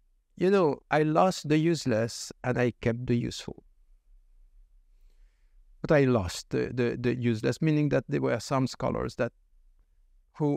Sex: male